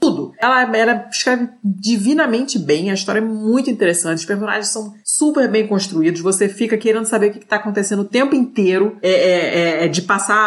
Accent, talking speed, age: Brazilian, 190 wpm, 20-39